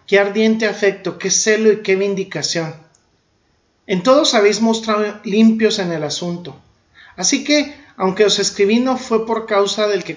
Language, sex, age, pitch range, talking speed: Spanish, male, 40-59, 175-215 Hz, 160 wpm